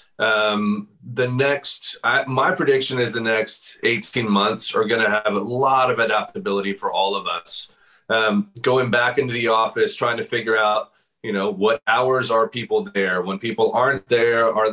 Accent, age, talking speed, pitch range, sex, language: American, 30-49, 180 wpm, 105-145 Hz, male, English